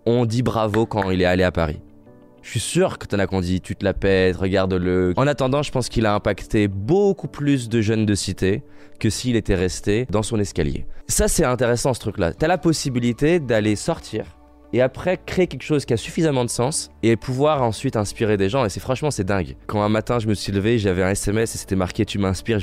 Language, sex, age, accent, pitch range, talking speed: French, male, 20-39, French, 100-130 Hz, 240 wpm